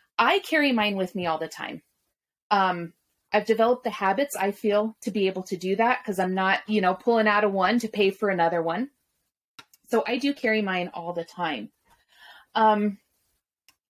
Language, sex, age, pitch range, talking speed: English, female, 30-49, 185-225 Hz, 190 wpm